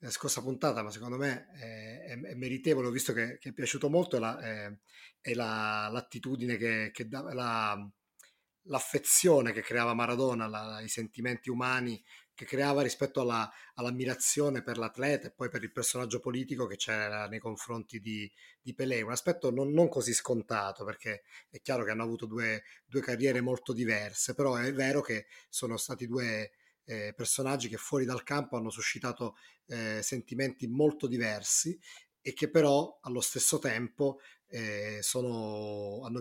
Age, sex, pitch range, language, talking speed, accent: 30-49, male, 110-135 Hz, Italian, 165 wpm, native